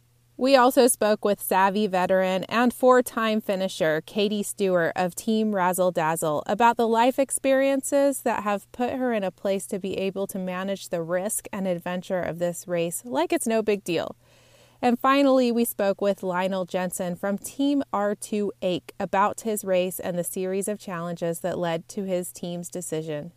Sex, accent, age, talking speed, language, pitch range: female, American, 30-49, 175 wpm, English, 180-230 Hz